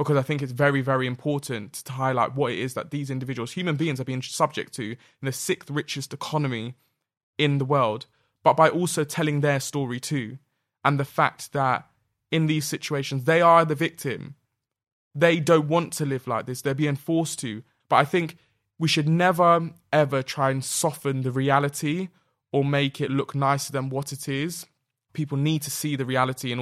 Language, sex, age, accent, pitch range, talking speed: English, male, 20-39, British, 125-145 Hz, 195 wpm